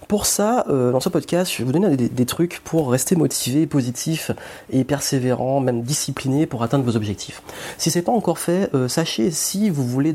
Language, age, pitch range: French, 30-49, 120-150 Hz